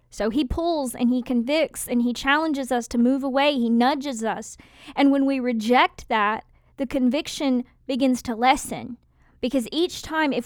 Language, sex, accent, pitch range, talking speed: English, female, American, 240-280 Hz, 170 wpm